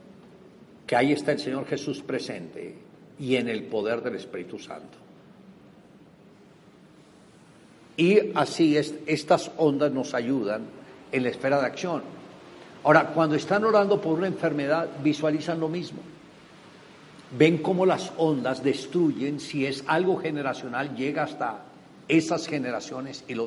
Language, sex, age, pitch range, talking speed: Spanish, male, 60-79, 135-170 Hz, 130 wpm